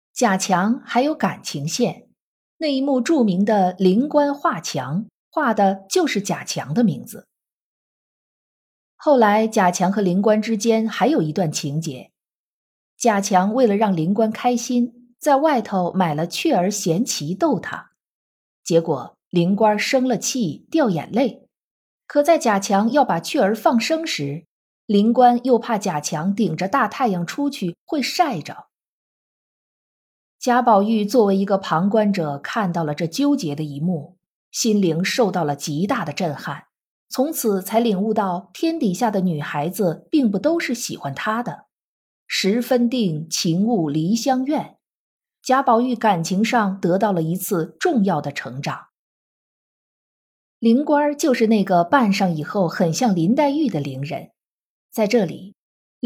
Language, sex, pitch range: Chinese, female, 180-245 Hz